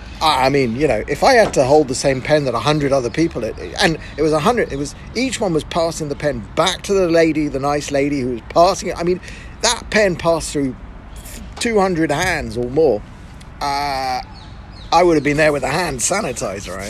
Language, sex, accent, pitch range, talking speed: English, male, British, 125-165 Hz, 215 wpm